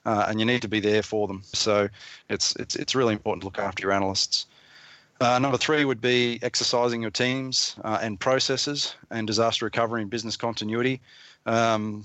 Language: English